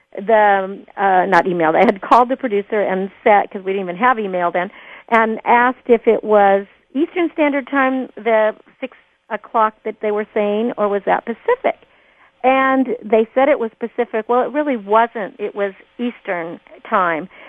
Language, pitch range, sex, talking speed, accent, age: English, 200-245 Hz, female, 175 wpm, American, 50-69